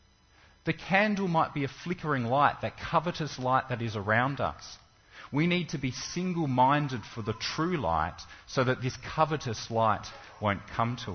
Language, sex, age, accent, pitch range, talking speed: English, male, 40-59, Australian, 110-160 Hz, 165 wpm